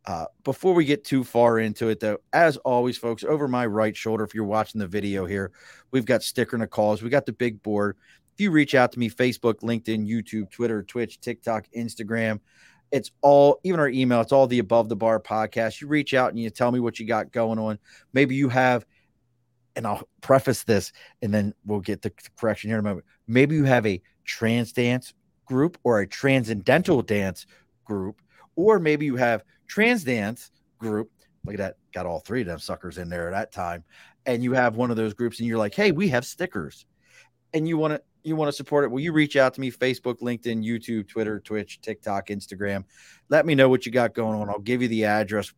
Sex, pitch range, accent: male, 110-135 Hz, American